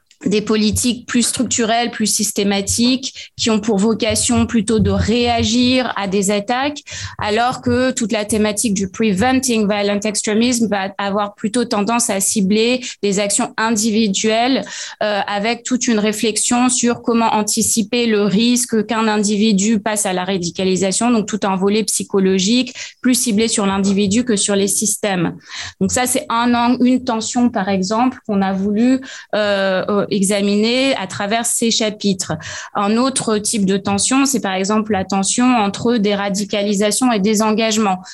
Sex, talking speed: female, 155 wpm